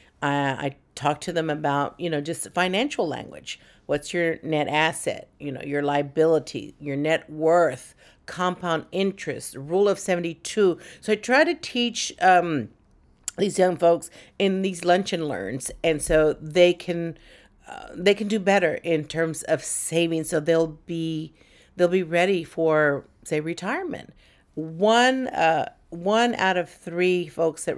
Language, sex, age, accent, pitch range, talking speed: English, female, 50-69, American, 150-185 Hz, 150 wpm